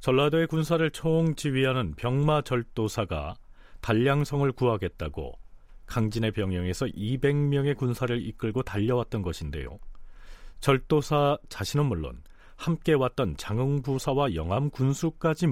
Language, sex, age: Korean, male, 40-59